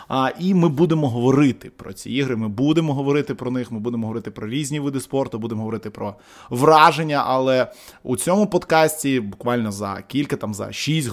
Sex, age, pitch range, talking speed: male, 20-39, 115-150 Hz, 185 wpm